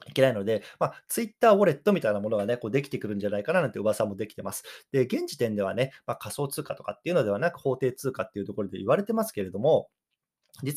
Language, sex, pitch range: Japanese, male, 110-180 Hz